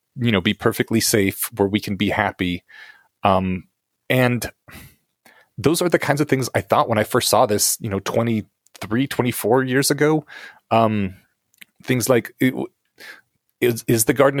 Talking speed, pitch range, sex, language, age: 160 wpm, 100-125 Hz, male, English, 30-49